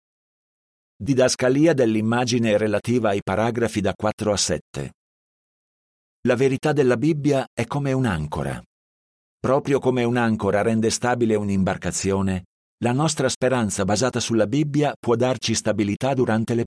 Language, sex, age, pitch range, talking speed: Italian, male, 50-69, 100-130 Hz, 120 wpm